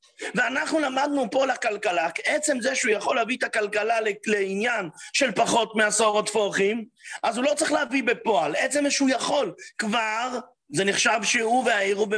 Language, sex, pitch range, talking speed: English, male, 215-275 Hz, 150 wpm